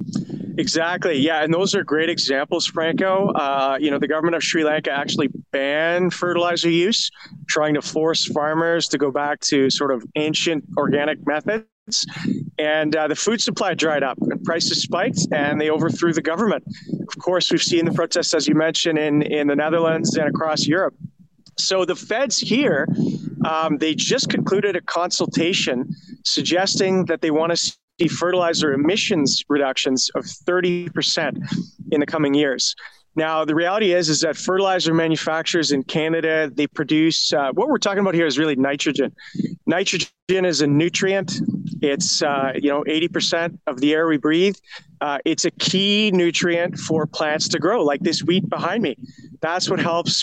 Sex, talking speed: male, 170 wpm